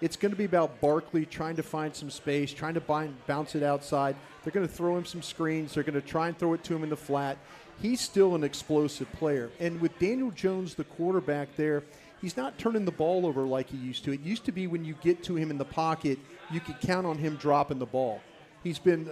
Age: 40-59